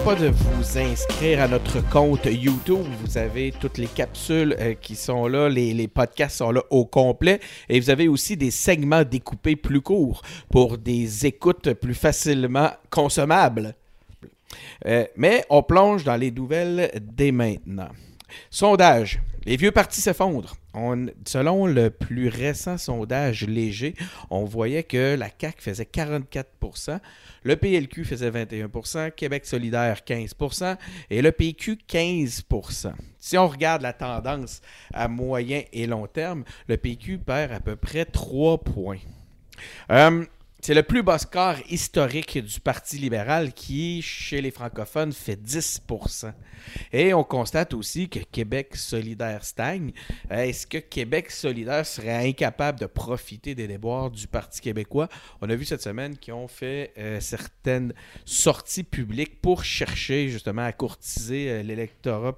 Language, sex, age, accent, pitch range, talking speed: French, male, 50-69, Canadian, 115-155 Hz, 140 wpm